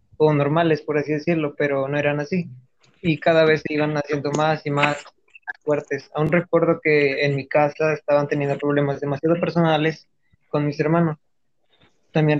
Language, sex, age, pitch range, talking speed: Spanish, male, 20-39, 145-160 Hz, 165 wpm